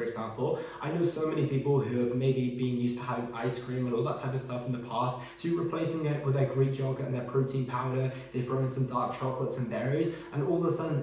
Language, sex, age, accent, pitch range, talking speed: English, male, 20-39, British, 125-150 Hz, 270 wpm